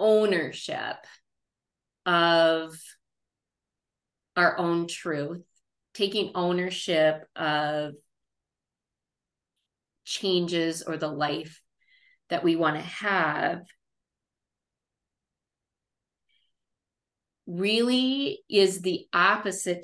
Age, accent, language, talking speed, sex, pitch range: 30-49, American, English, 65 wpm, female, 155-195 Hz